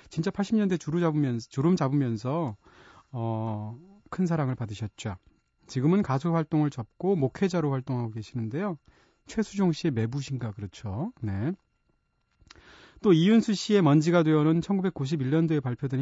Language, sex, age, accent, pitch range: Korean, male, 30-49, native, 125-165 Hz